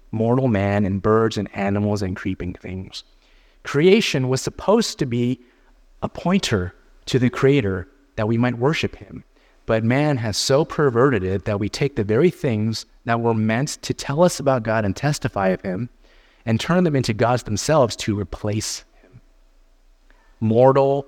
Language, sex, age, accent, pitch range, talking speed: English, male, 30-49, American, 100-130 Hz, 165 wpm